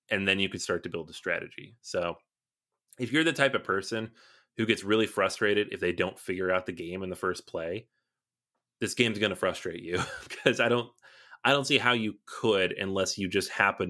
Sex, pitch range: male, 90-125 Hz